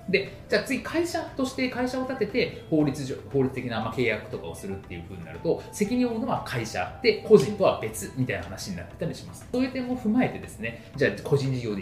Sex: male